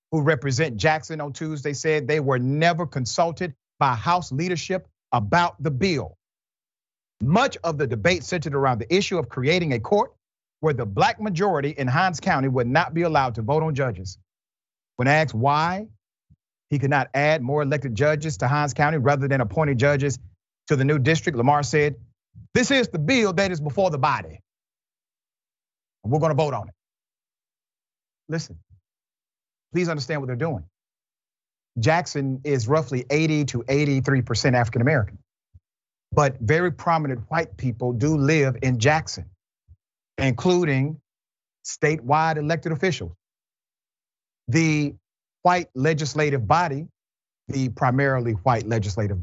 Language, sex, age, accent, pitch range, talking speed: English, male, 40-59, American, 120-160 Hz, 140 wpm